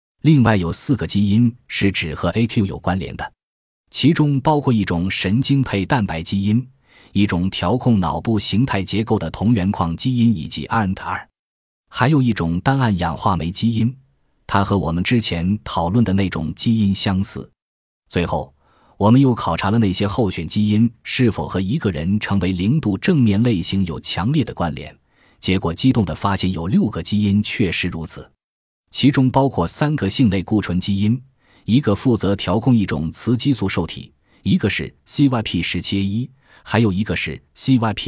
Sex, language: male, Chinese